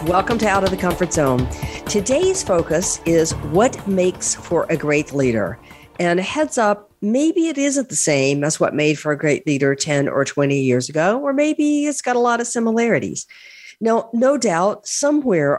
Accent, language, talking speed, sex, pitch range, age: American, English, 190 wpm, female, 140-195 Hz, 50-69